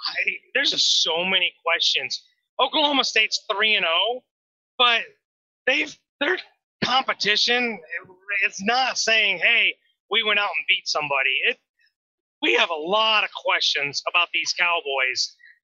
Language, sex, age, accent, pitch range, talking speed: English, male, 30-49, American, 195-240 Hz, 130 wpm